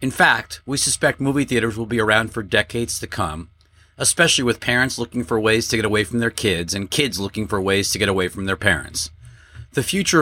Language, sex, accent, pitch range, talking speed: English, male, American, 95-120 Hz, 225 wpm